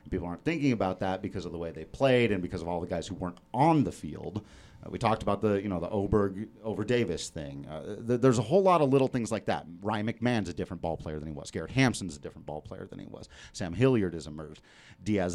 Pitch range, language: 95-135 Hz, English